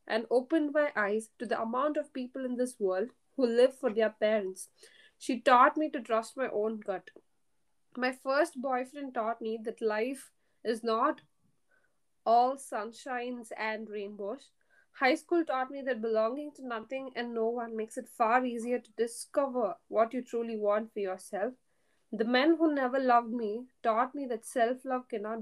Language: English